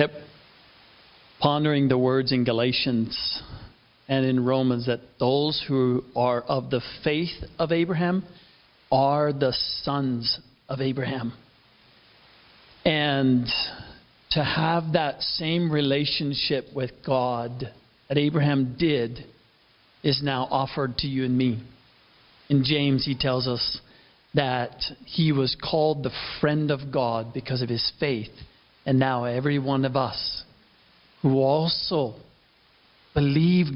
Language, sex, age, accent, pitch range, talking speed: English, male, 40-59, American, 125-150 Hz, 120 wpm